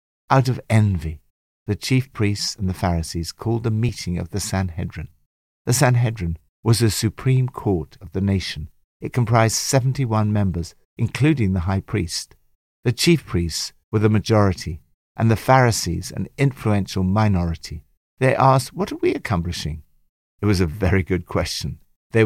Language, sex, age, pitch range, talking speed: English, male, 60-79, 85-115 Hz, 155 wpm